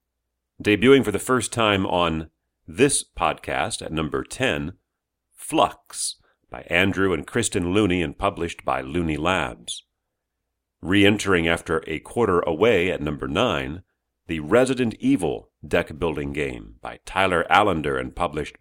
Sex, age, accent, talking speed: male, 40-59, American, 130 wpm